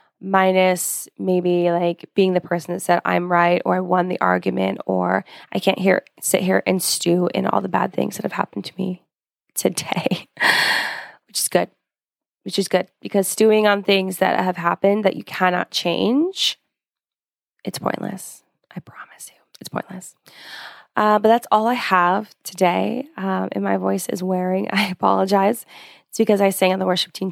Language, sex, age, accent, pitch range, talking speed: English, female, 20-39, American, 180-215 Hz, 180 wpm